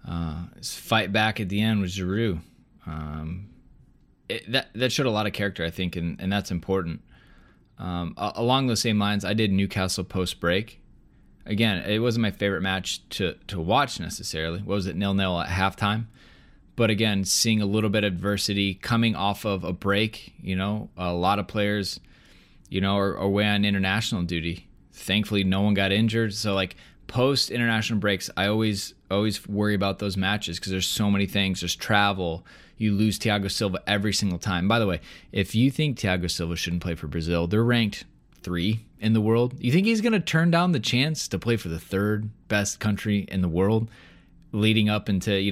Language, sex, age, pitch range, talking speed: English, male, 20-39, 95-110 Hz, 195 wpm